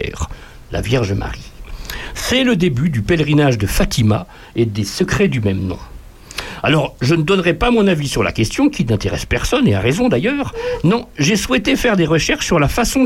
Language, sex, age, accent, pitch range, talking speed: French, male, 60-79, French, 120-195 Hz, 195 wpm